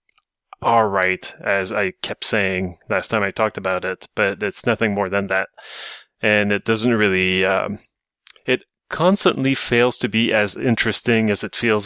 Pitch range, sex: 100-120 Hz, male